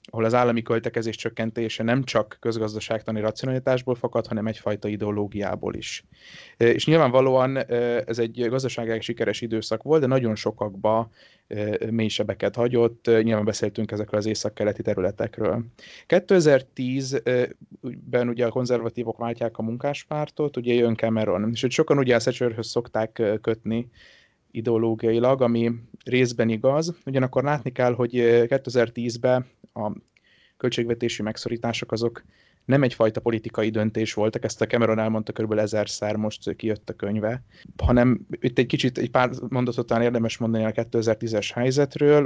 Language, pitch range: Hungarian, 110-125 Hz